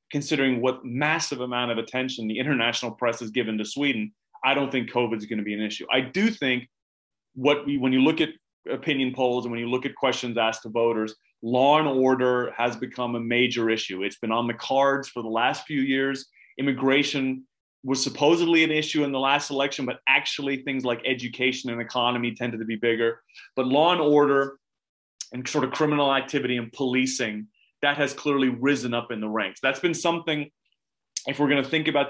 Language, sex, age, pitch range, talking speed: English, male, 30-49, 120-140 Hz, 200 wpm